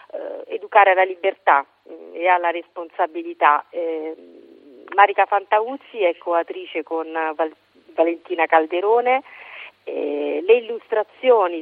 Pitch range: 165-230 Hz